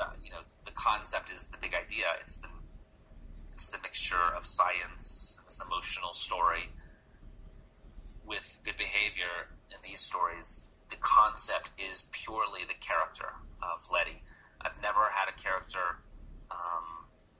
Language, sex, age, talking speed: English, male, 30-49, 140 wpm